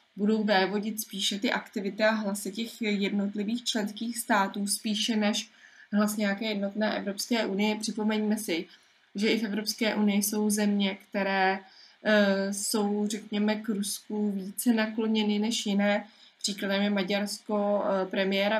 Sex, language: female, Czech